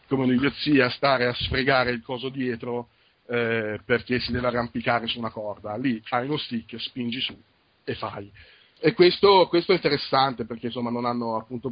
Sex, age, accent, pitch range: male, 40-59, native, 115-130 Hz